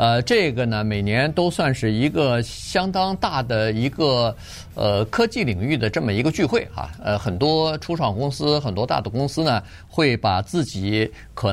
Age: 50-69